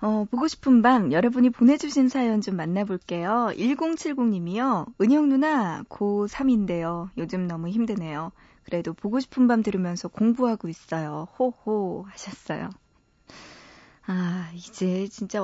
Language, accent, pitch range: Korean, native, 180-245 Hz